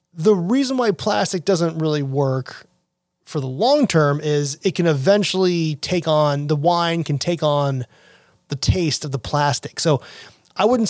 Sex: male